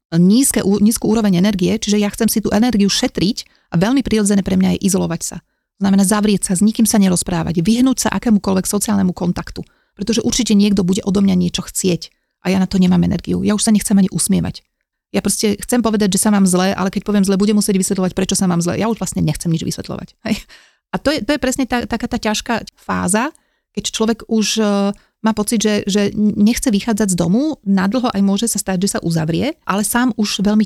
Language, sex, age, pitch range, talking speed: Slovak, female, 30-49, 185-215 Hz, 215 wpm